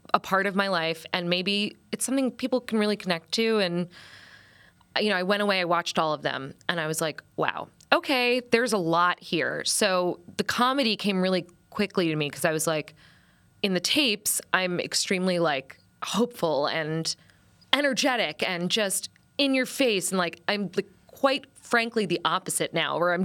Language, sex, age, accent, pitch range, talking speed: English, female, 20-39, American, 170-205 Hz, 185 wpm